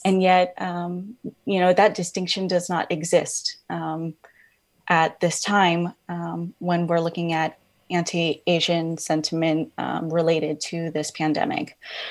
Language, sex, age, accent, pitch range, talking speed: English, female, 20-39, American, 165-185 Hz, 130 wpm